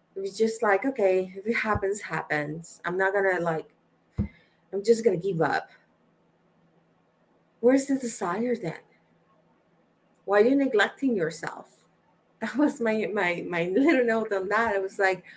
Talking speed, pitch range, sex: 150 wpm, 180-245 Hz, female